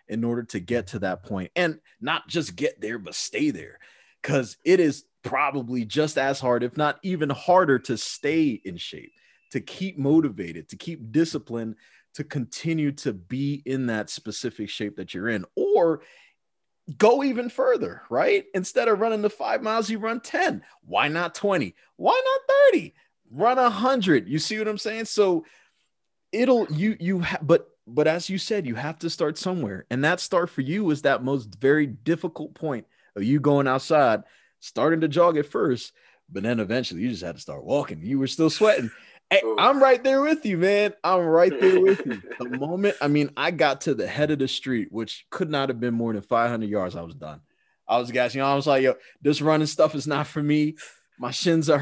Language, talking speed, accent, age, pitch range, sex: English, 200 wpm, American, 30-49, 130-190 Hz, male